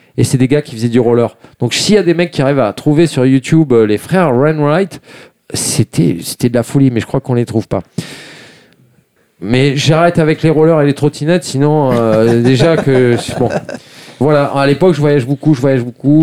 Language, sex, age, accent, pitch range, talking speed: French, male, 40-59, French, 130-170 Hz, 210 wpm